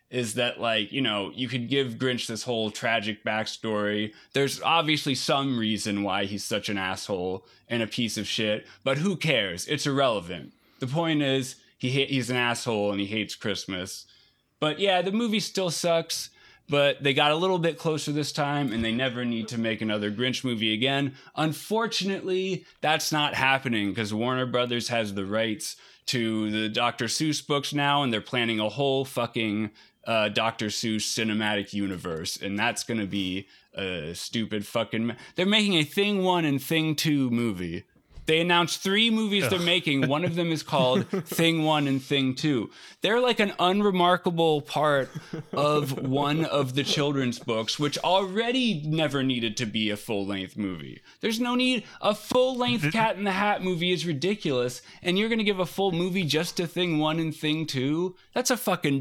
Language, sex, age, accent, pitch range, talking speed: English, male, 20-39, American, 115-165 Hz, 180 wpm